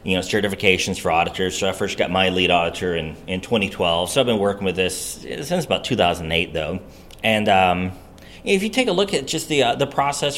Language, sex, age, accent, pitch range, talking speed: English, male, 30-49, American, 100-150 Hz, 220 wpm